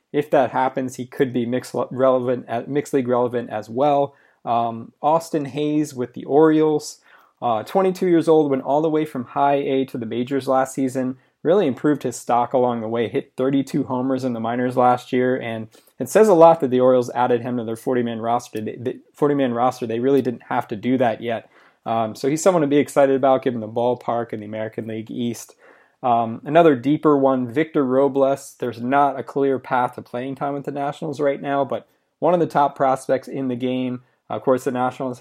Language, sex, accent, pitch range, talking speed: English, male, American, 120-140 Hz, 210 wpm